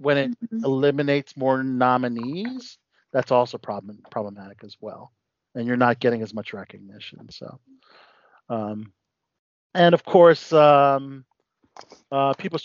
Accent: American